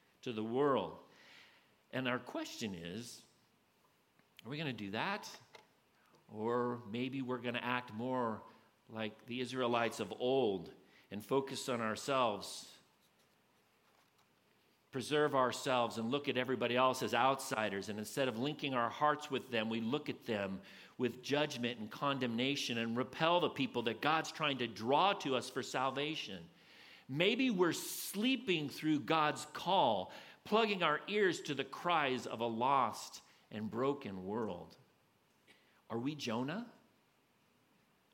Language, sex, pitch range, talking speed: English, male, 115-155 Hz, 140 wpm